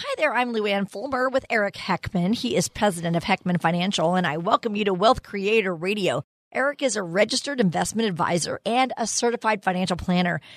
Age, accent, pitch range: 40-59, American, 175-235 Hz